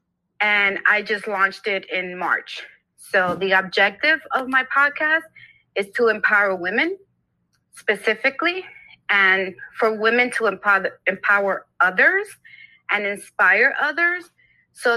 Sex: female